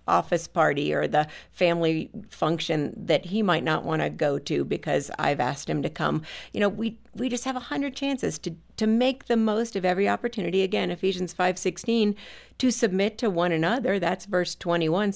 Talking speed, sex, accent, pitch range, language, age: 200 wpm, female, American, 160-210 Hz, English, 50-69